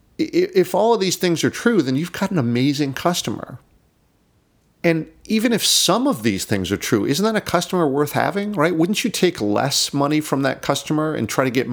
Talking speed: 210 wpm